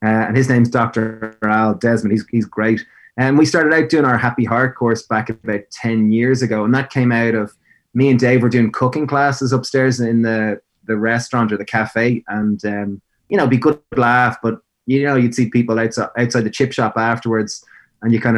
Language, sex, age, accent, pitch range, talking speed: English, male, 20-39, Irish, 110-130 Hz, 220 wpm